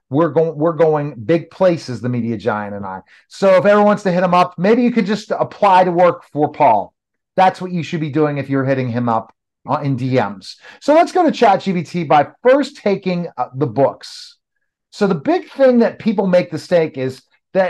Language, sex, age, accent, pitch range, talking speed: English, male, 40-59, American, 145-205 Hz, 215 wpm